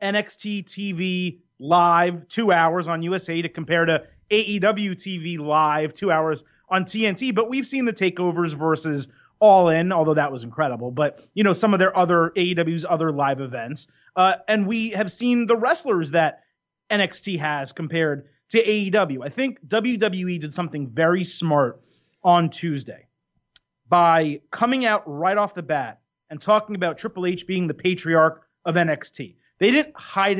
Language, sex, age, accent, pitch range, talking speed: English, male, 30-49, American, 155-200 Hz, 165 wpm